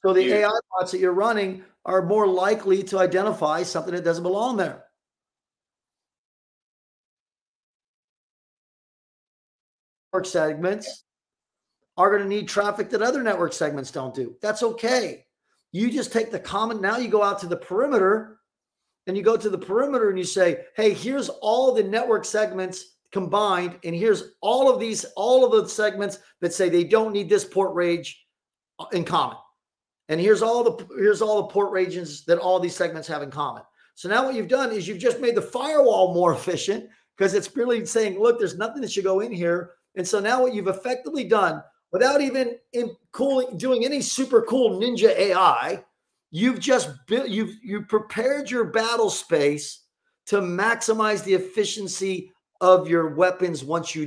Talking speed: 170 wpm